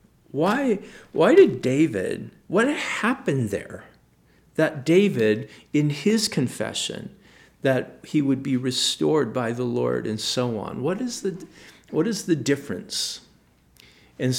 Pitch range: 115-145 Hz